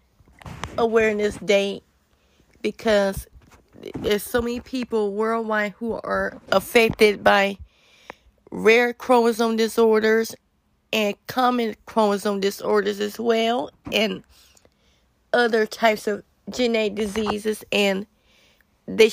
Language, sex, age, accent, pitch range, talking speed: English, female, 20-39, American, 210-230 Hz, 90 wpm